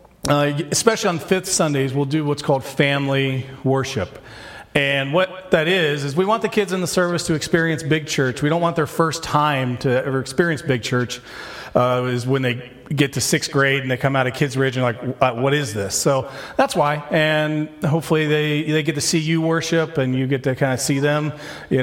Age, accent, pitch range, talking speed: 40-59, American, 130-160 Hz, 215 wpm